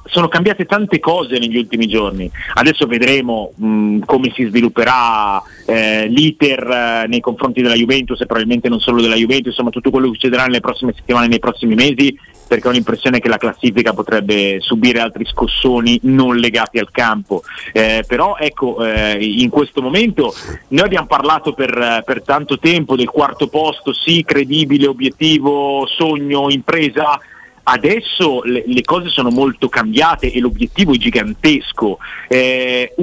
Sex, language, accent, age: male, Italian, native, 40-59